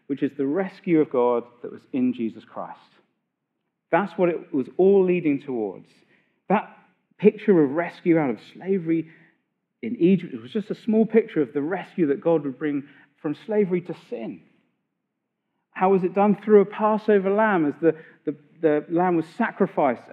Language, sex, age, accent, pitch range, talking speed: English, male, 40-59, British, 135-195 Hz, 175 wpm